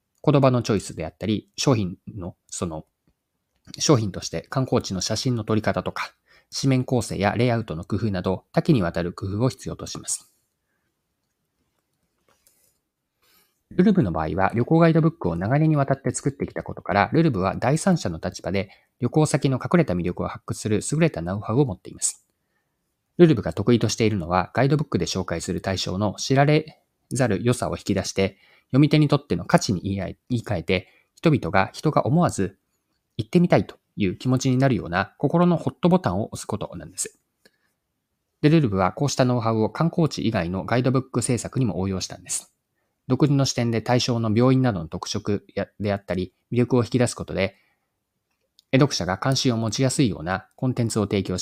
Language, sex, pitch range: Japanese, male, 95-135 Hz